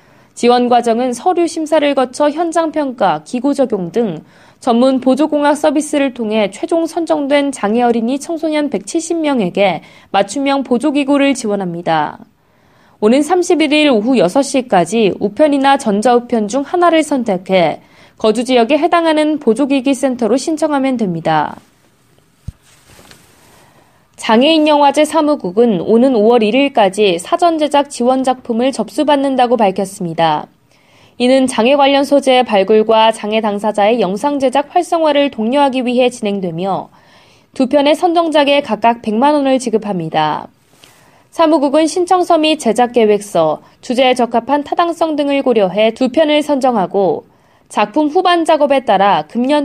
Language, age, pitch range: Korean, 20-39, 220-295 Hz